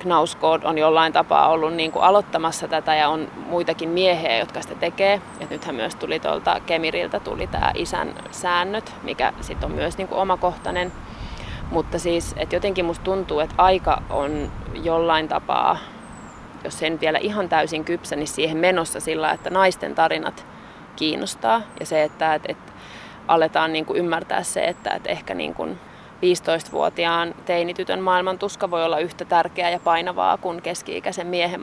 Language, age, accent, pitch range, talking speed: Finnish, 20-39, native, 160-180 Hz, 165 wpm